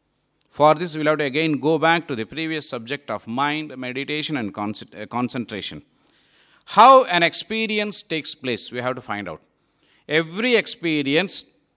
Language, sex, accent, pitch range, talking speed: English, male, Indian, 135-200 Hz, 155 wpm